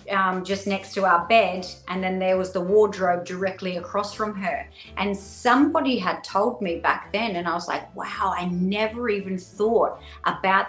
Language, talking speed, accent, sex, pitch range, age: English, 185 wpm, Australian, female, 175-205 Hz, 30-49